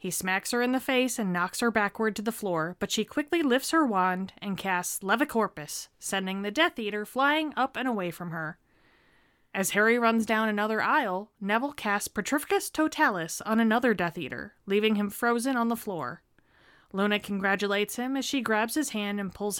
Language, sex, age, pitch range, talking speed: English, female, 20-39, 185-230 Hz, 190 wpm